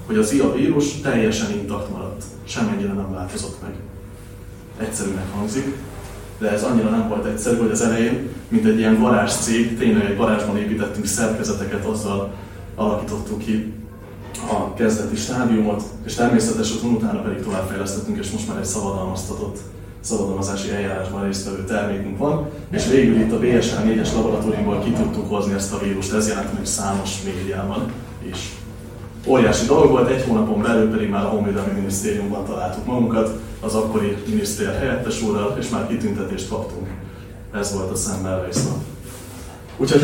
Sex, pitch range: male, 100-115 Hz